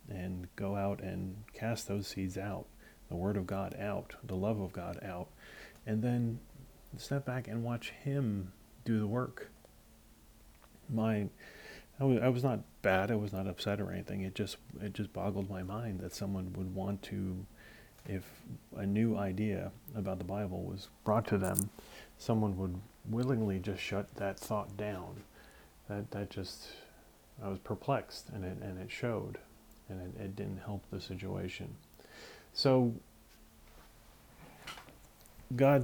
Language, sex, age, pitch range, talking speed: English, male, 40-59, 95-110 Hz, 150 wpm